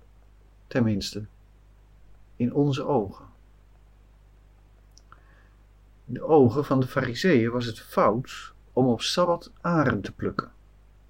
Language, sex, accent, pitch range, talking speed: Dutch, male, Dutch, 100-135 Hz, 105 wpm